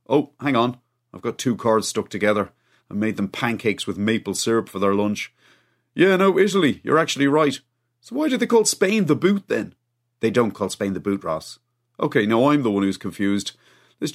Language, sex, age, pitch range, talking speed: English, male, 30-49, 110-165 Hz, 210 wpm